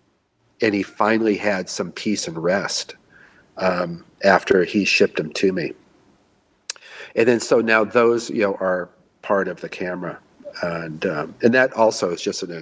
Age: 50-69